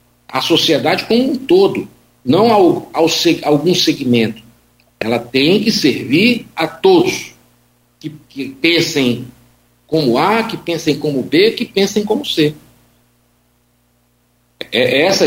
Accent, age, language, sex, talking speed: Brazilian, 60-79, Portuguese, male, 115 wpm